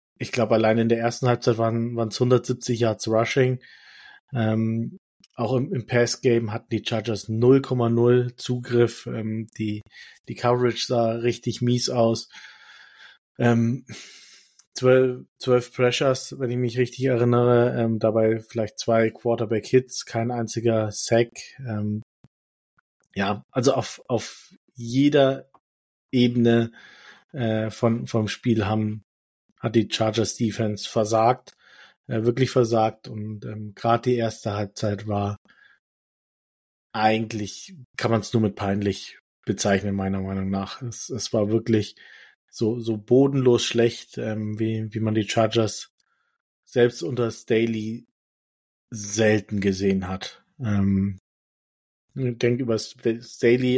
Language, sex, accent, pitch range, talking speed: German, male, German, 110-120 Hz, 120 wpm